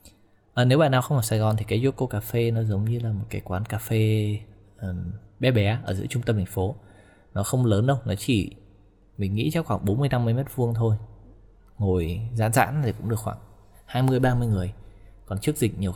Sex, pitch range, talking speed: male, 95-115 Hz, 205 wpm